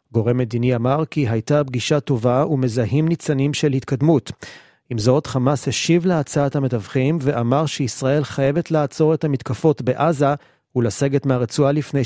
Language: Hebrew